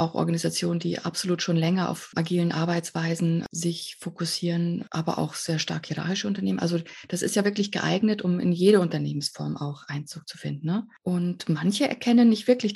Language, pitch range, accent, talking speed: German, 170-210 Hz, German, 175 wpm